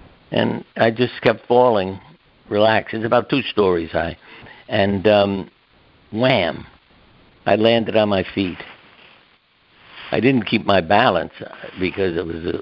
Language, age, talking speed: English, 60-79, 135 wpm